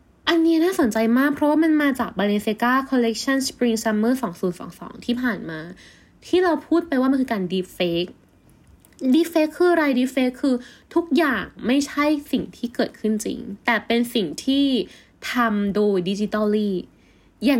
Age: 10-29